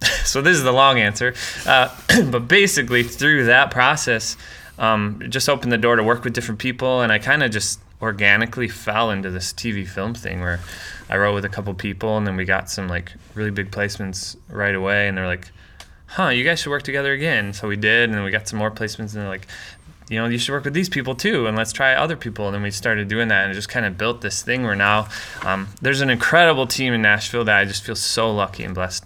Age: 20-39